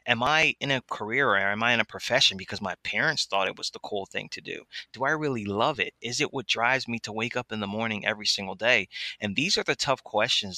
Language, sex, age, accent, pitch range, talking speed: English, male, 20-39, American, 100-130 Hz, 265 wpm